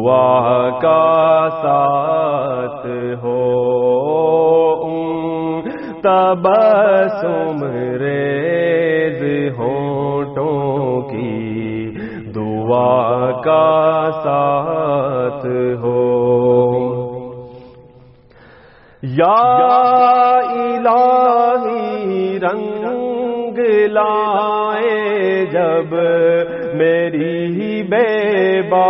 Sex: male